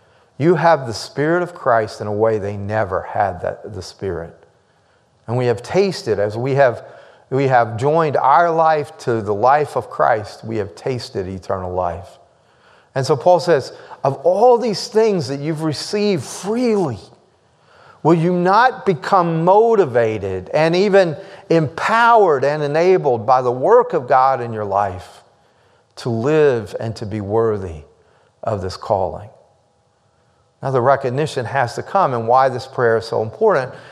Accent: American